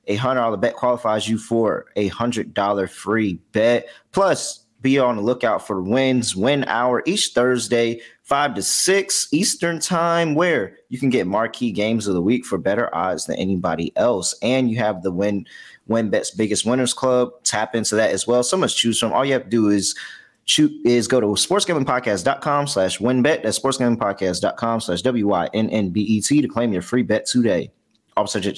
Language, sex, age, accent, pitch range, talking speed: English, male, 20-39, American, 105-135 Hz, 185 wpm